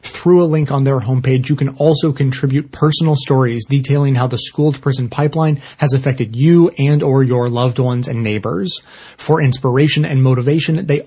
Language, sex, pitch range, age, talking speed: English, male, 130-150 Hz, 30-49, 185 wpm